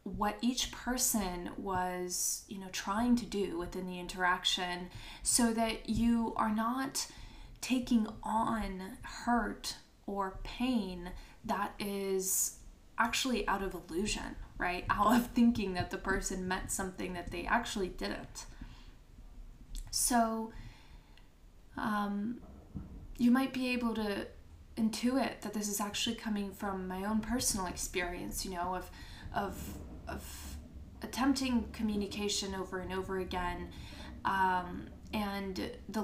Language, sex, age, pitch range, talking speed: English, female, 20-39, 180-225 Hz, 120 wpm